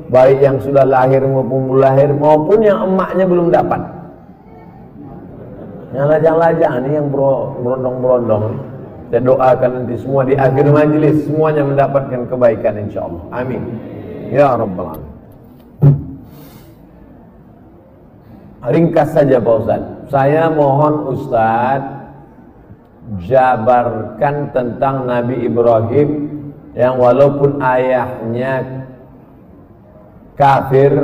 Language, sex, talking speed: Indonesian, male, 90 wpm